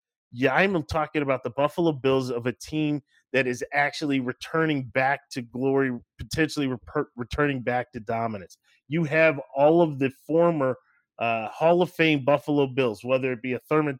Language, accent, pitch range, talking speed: English, American, 125-150 Hz, 165 wpm